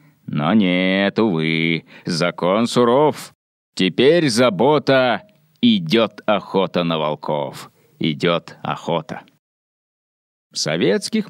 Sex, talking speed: male, 75 wpm